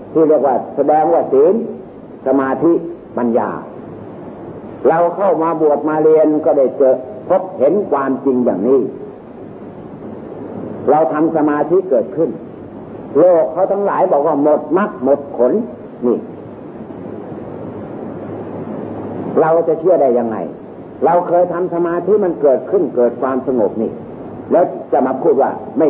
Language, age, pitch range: Thai, 50-69, 130-175 Hz